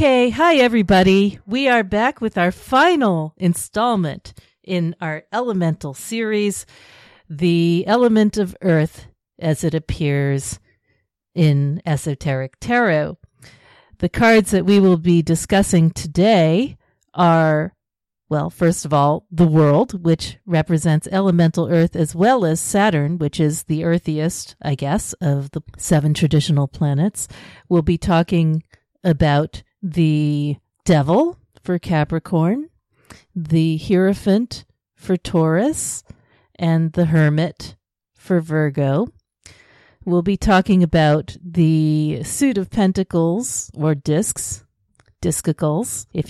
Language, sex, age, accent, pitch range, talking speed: English, female, 50-69, American, 150-190 Hz, 115 wpm